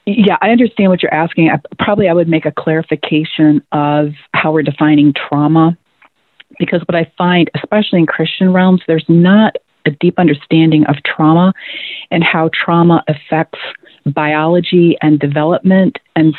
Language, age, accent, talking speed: English, 40-59, American, 145 wpm